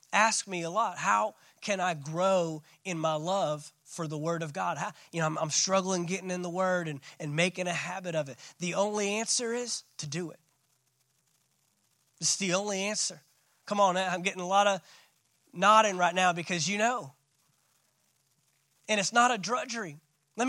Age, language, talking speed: 20-39, English, 180 wpm